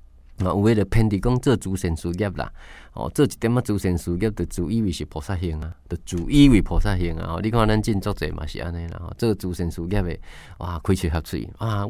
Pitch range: 85-115 Hz